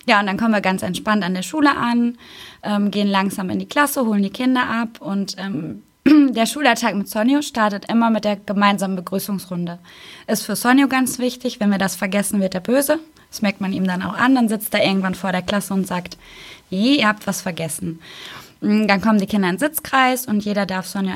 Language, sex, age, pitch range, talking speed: German, female, 20-39, 190-235 Hz, 215 wpm